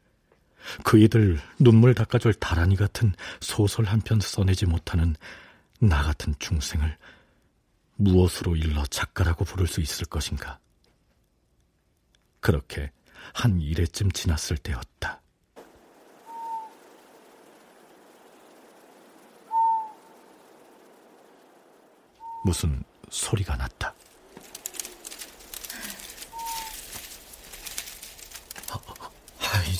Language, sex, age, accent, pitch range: Korean, male, 50-69, native, 85-120 Hz